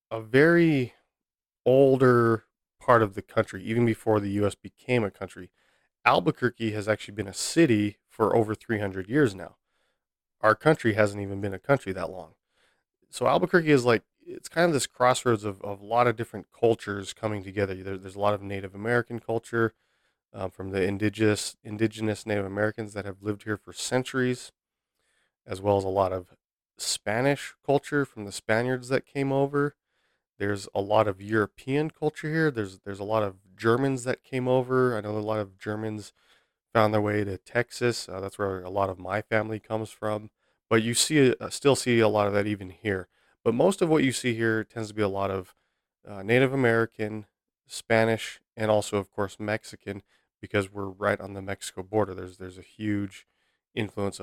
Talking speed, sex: 185 wpm, male